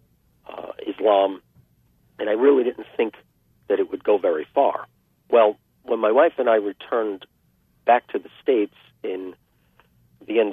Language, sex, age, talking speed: English, male, 50-69, 155 wpm